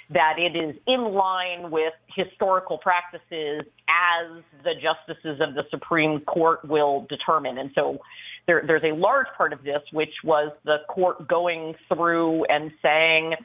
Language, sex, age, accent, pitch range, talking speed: English, female, 40-59, American, 150-185 Hz, 150 wpm